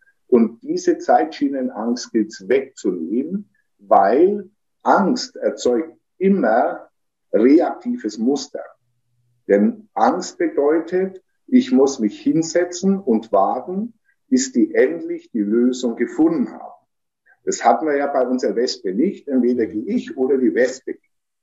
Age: 50-69